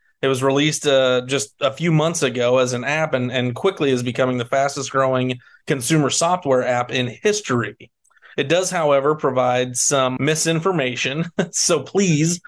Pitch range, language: 130-155 Hz, English